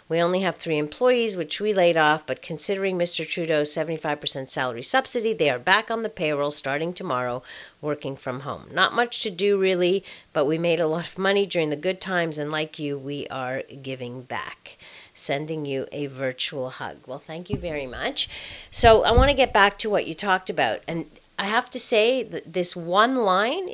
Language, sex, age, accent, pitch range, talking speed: English, female, 50-69, American, 155-220 Hz, 200 wpm